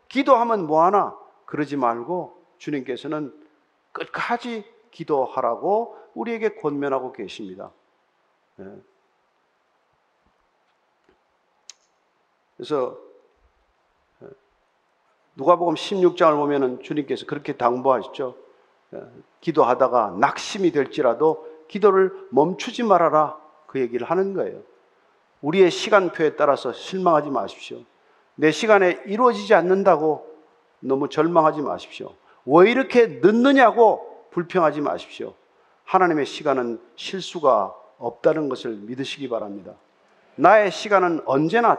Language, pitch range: Korean, 150-210 Hz